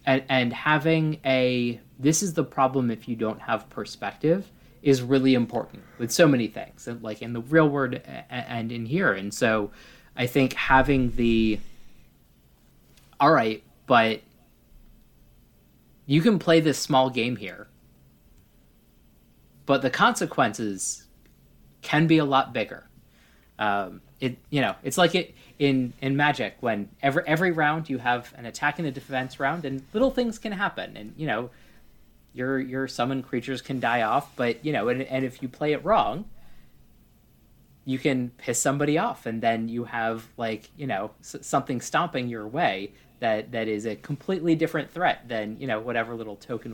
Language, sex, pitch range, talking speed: English, male, 115-140 Hz, 165 wpm